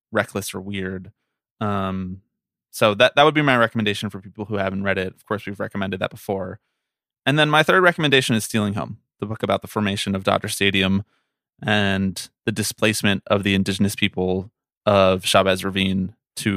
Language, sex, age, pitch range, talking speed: English, male, 20-39, 95-115 Hz, 180 wpm